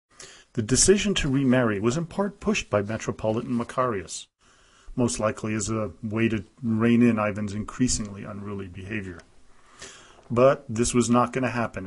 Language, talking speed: English, 150 wpm